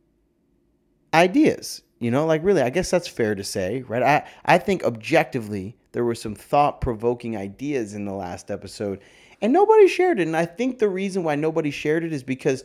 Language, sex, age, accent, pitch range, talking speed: English, male, 30-49, American, 115-170 Hz, 190 wpm